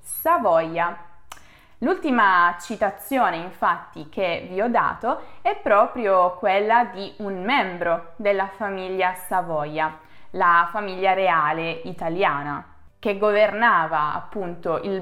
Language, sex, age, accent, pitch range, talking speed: Italian, female, 20-39, native, 185-235 Hz, 100 wpm